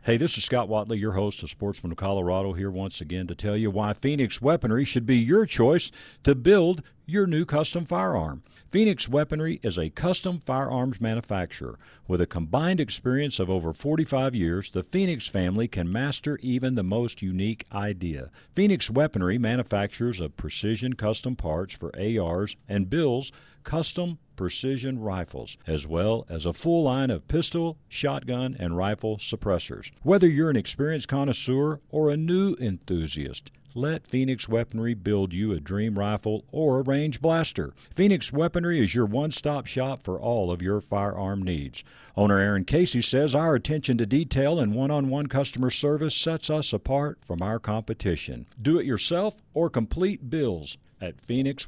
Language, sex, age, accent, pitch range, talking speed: English, male, 50-69, American, 100-145 Hz, 165 wpm